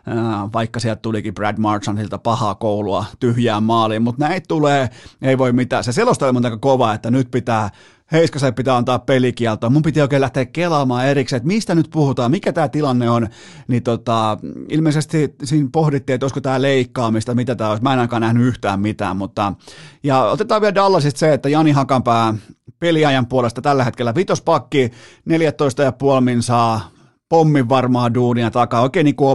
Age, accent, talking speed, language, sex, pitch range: 30-49, native, 170 wpm, Finnish, male, 115-150 Hz